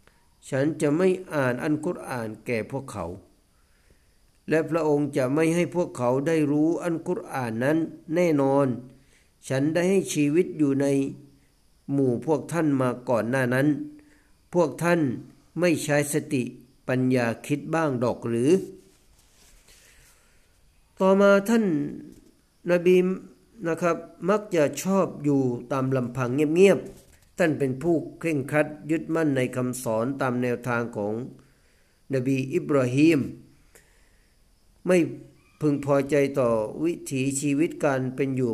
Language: Thai